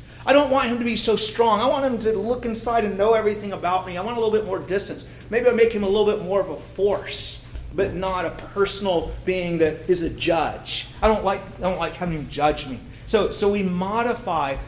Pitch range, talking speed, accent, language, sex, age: 170-230 Hz, 245 wpm, American, English, male, 40-59